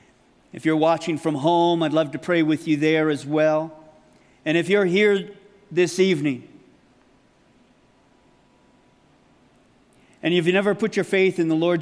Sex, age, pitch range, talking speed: male, 40-59, 160-195 Hz, 150 wpm